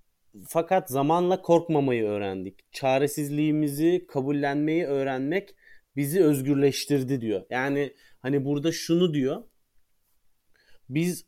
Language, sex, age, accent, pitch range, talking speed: Turkish, male, 30-49, native, 135-160 Hz, 85 wpm